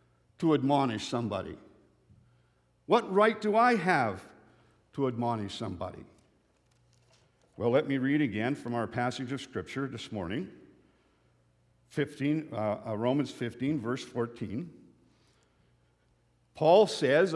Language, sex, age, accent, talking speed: English, male, 60-79, American, 105 wpm